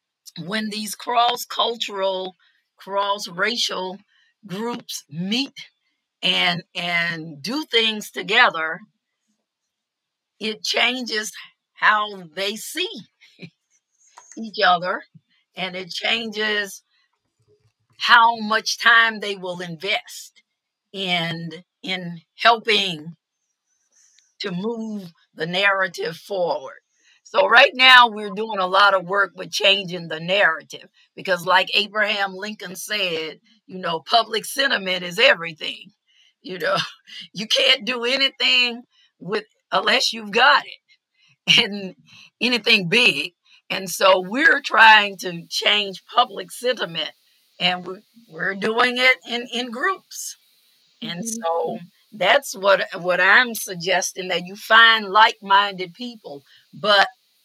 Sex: female